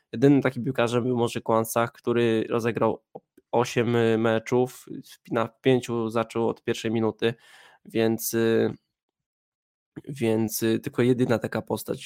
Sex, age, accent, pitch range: male, 20-39, native, 110-130 Hz